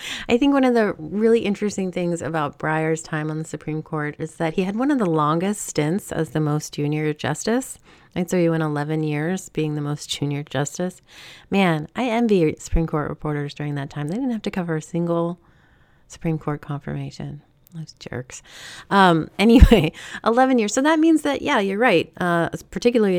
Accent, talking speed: American, 190 wpm